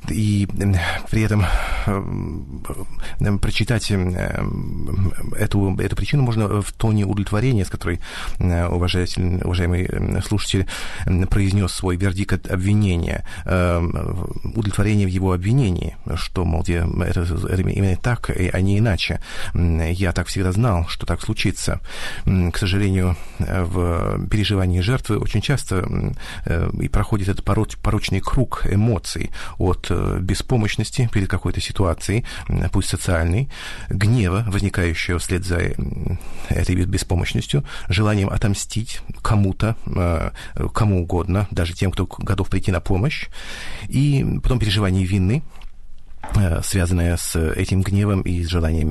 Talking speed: 110 wpm